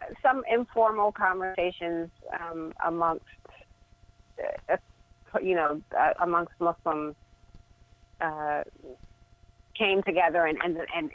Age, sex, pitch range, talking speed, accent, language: 30-49, female, 160-195 Hz, 90 wpm, American, English